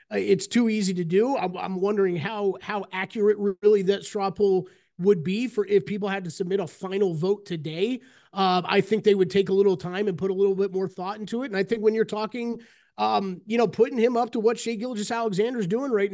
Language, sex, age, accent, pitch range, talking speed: English, male, 30-49, American, 190-230 Hz, 240 wpm